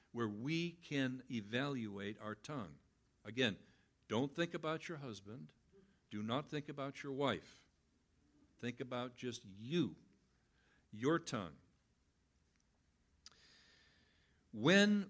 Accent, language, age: American, English, 60-79